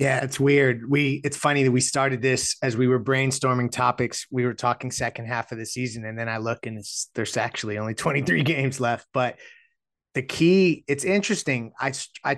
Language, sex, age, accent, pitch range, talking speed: English, male, 30-49, American, 120-140 Hz, 205 wpm